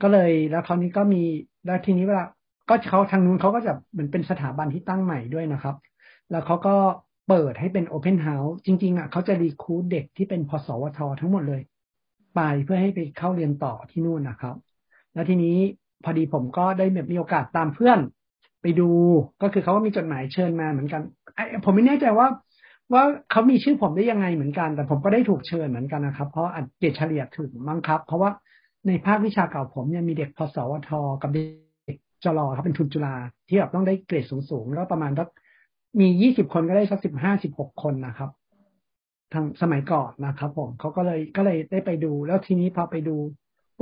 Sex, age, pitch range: male, 60-79, 150-190 Hz